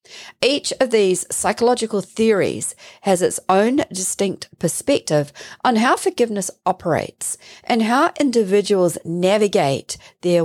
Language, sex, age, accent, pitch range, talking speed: English, female, 40-59, Australian, 155-200 Hz, 110 wpm